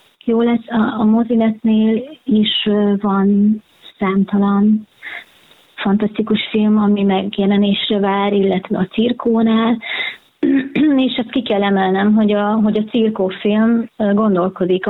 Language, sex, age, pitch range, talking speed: Hungarian, female, 30-49, 180-215 Hz, 110 wpm